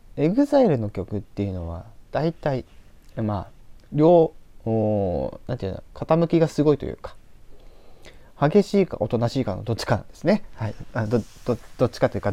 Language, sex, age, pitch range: Japanese, male, 20-39, 100-130 Hz